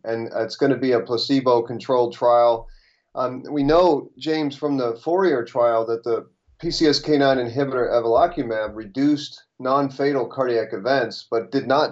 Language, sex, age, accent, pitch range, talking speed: English, male, 30-49, American, 120-140 Hz, 135 wpm